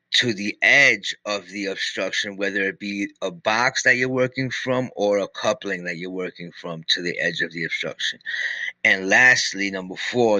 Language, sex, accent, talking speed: English, male, American, 185 wpm